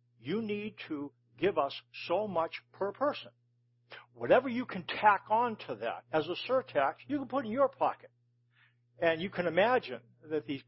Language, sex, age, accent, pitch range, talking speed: English, male, 60-79, American, 120-175 Hz, 175 wpm